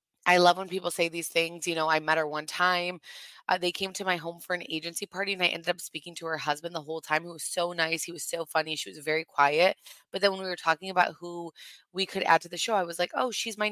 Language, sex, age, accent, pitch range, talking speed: English, female, 20-39, American, 160-185 Hz, 295 wpm